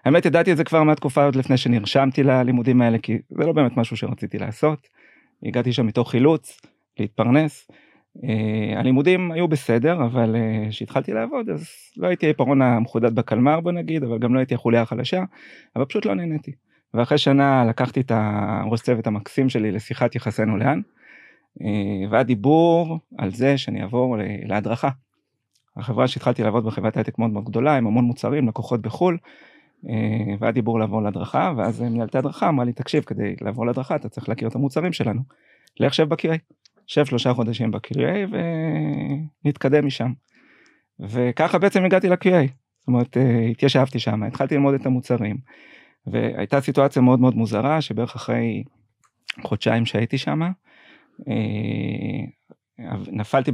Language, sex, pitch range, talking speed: Hebrew, male, 115-145 Hz, 140 wpm